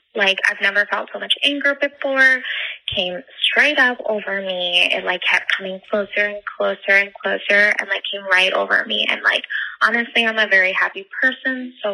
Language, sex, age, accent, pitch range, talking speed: English, female, 20-39, American, 195-240 Hz, 185 wpm